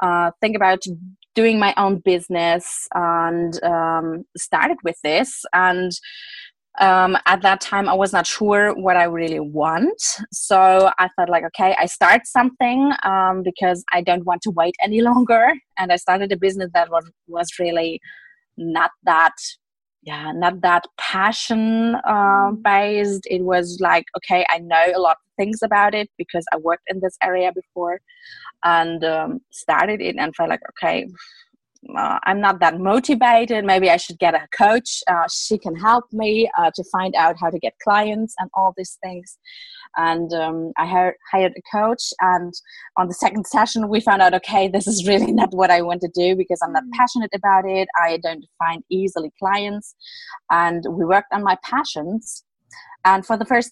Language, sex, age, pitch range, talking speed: English, female, 20-39, 175-220 Hz, 175 wpm